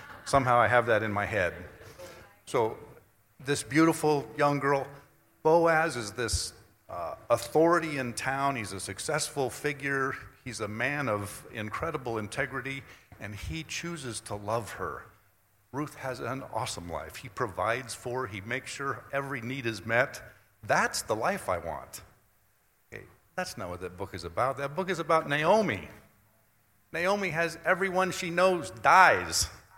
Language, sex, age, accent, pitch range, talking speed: English, male, 50-69, American, 105-140 Hz, 145 wpm